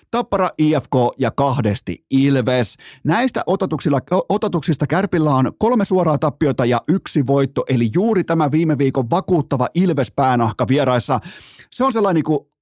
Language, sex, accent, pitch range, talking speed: Finnish, male, native, 120-170 Hz, 130 wpm